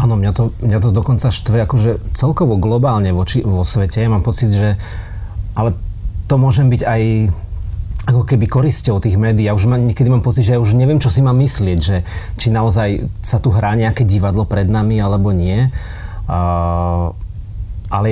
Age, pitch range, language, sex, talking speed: 30-49, 100-120 Hz, Slovak, male, 180 wpm